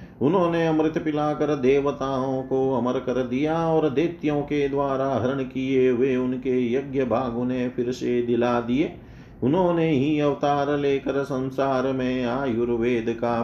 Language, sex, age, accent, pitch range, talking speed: Hindi, male, 40-59, native, 120-145 Hz, 140 wpm